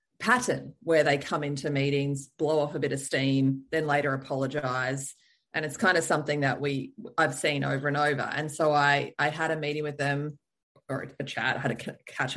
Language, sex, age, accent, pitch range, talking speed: English, female, 20-39, Australian, 140-165 Hz, 210 wpm